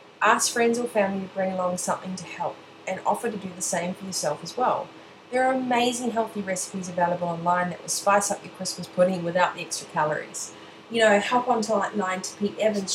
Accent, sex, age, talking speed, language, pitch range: Australian, female, 30-49, 220 wpm, English, 180-215 Hz